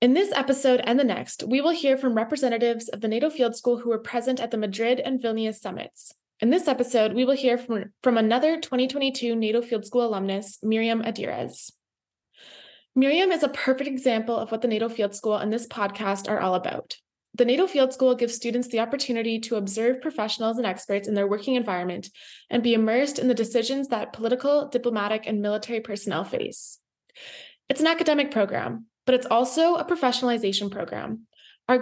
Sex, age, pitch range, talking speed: female, 20-39, 215-255 Hz, 185 wpm